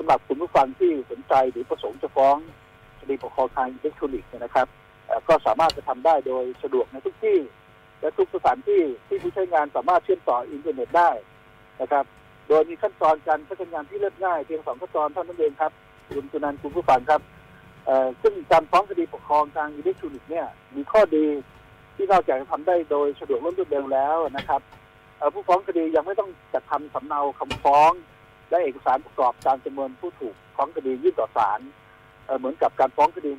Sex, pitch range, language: male, 130-210 Hz, Thai